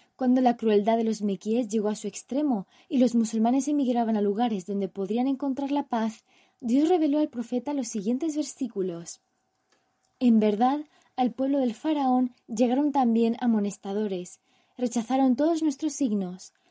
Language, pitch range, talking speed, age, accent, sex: Spanish, 225-275 Hz, 145 wpm, 20-39, Spanish, female